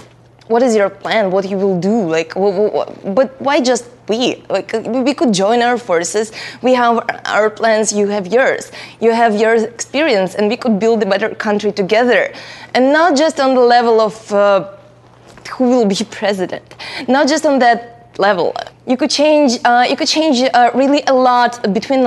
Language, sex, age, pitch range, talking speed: English, female, 20-39, 195-250 Hz, 190 wpm